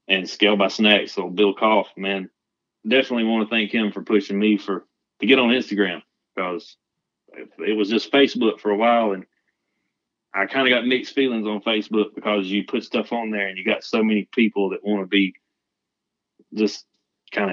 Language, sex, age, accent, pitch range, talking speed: English, male, 30-49, American, 95-105 Hz, 190 wpm